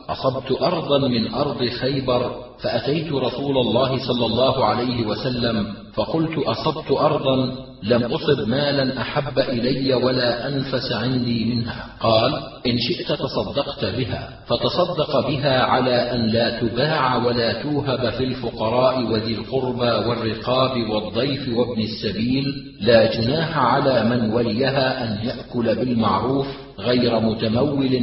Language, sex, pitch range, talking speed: Arabic, male, 115-135 Hz, 120 wpm